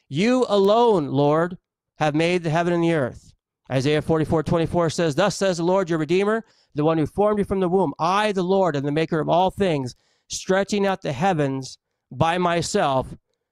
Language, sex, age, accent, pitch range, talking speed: English, male, 40-59, American, 155-195 Hz, 200 wpm